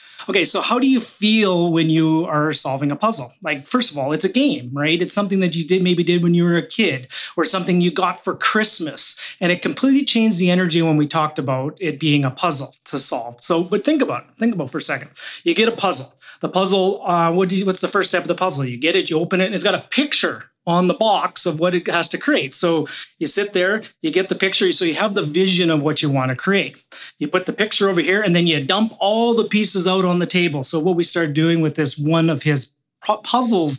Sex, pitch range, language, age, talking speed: male, 160-200 Hz, English, 30-49, 265 wpm